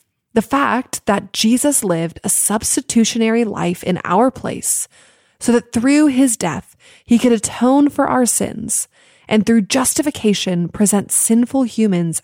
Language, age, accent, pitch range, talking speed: English, 20-39, American, 195-245 Hz, 135 wpm